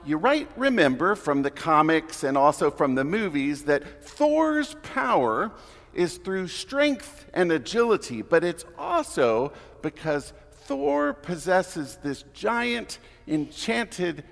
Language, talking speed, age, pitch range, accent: English, 115 wpm, 50-69, 145-225 Hz, American